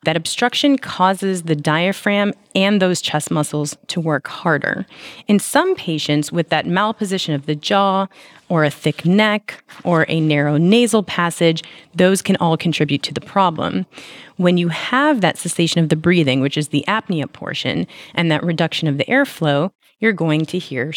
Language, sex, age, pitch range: English, female, 30-49, 155-195 Hz